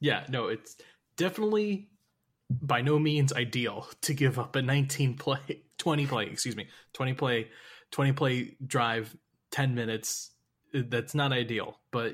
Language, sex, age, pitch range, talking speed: English, male, 20-39, 120-145 Hz, 145 wpm